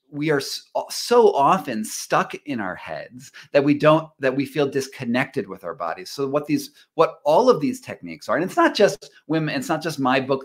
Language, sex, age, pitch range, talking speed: Polish, male, 30-49, 130-190 Hz, 215 wpm